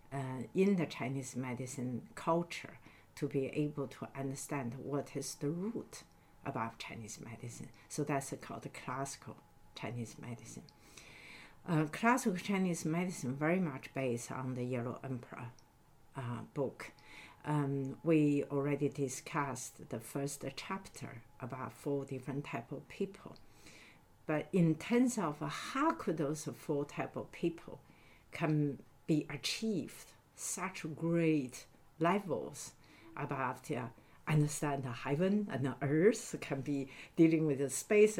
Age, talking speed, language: 60-79, 130 wpm, English